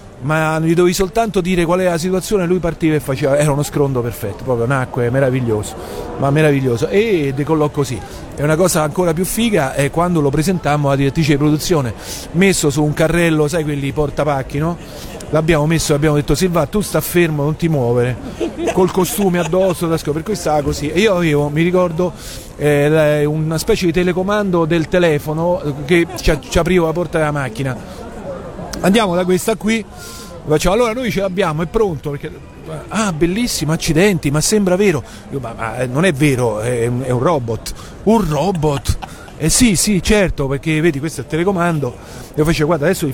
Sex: male